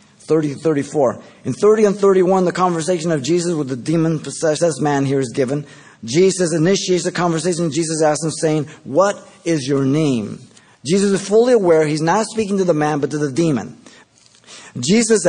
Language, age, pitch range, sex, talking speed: English, 50-69, 140-190 Hz, male, 175 wpm